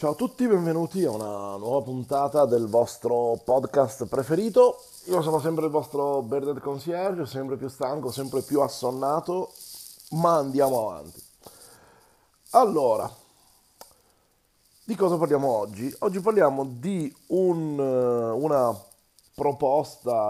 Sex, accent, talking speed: male, native, 110 wpm